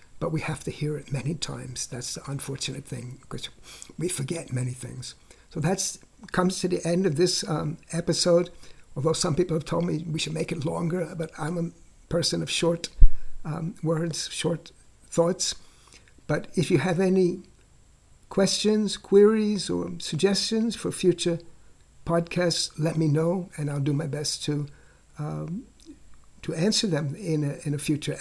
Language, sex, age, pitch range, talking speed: English, male, 60-79, 145-175 Hz, 165 wpm